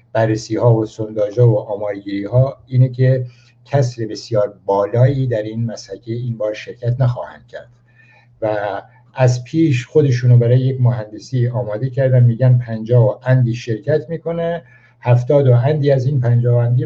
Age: 60-79